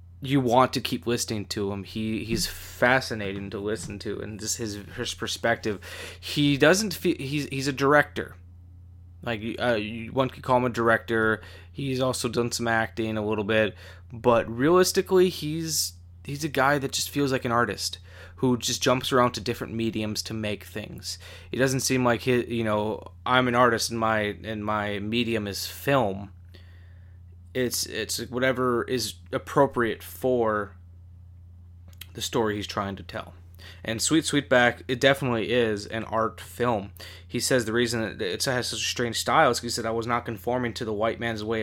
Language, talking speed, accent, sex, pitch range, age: English, 180 wpm, American, male, 90-120 Hz, 20-39